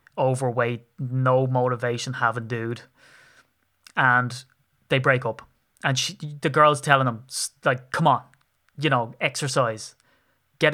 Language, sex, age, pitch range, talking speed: English, male, 20-39, 130-160 Hz, 130 wpm